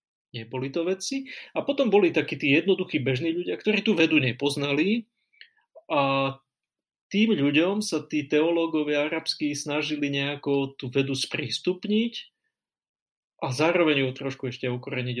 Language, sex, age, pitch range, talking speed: Slovak, male, 30-49, 125-155 Hz, 130 wpm